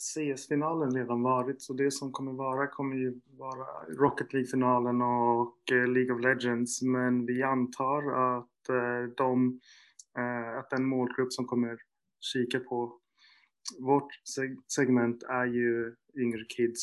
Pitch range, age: 120-130 Hz, 20-39